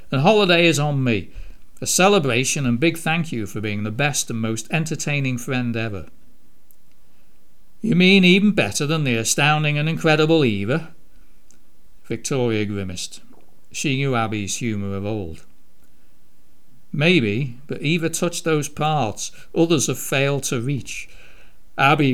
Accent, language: British, English